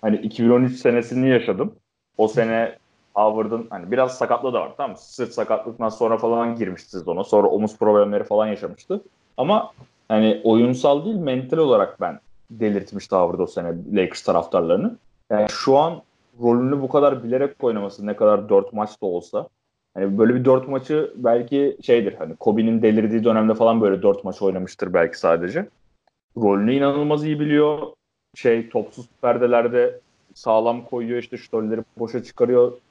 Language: Turkish